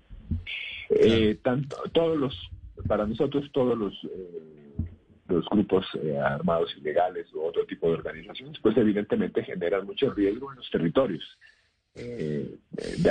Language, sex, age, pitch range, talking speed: Spanish, male, 50-69, 85-105 Hz, 135 wpm